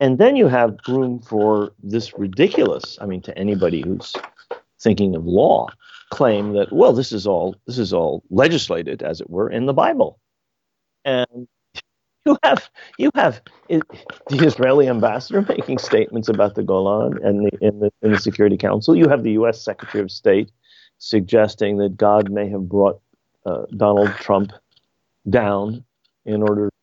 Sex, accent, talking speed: male, American, 160 wpm